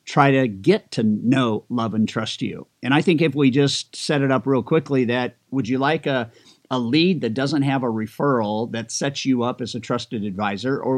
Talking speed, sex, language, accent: 225 wpm, male, English, American